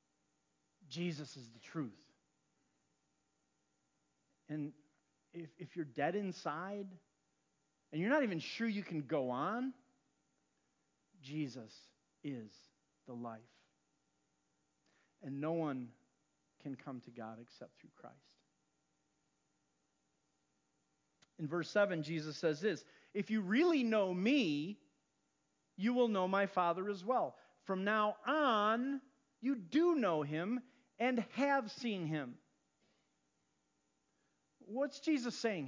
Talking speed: 110 wpm